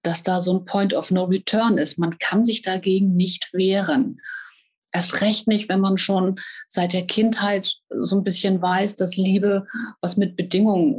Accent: German